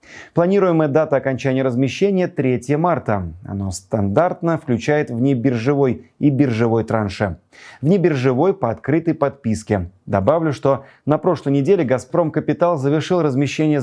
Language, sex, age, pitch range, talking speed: Russian, male, 30-49, 125-155 Hz, 120 wpm